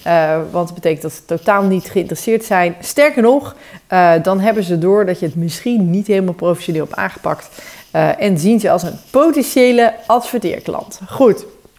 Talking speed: 180 wpm